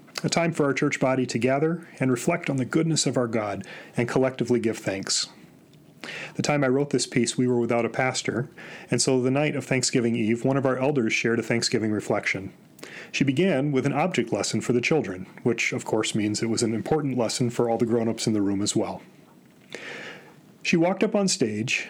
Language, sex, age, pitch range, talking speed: English, male, 40-59, 115-145 Hz, 215 wpm